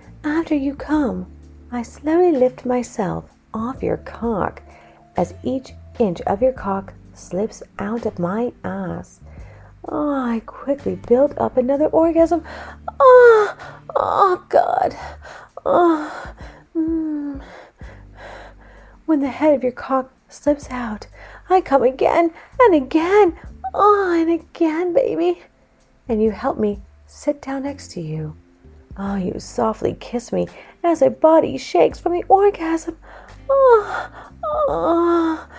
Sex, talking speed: female, 120 wpm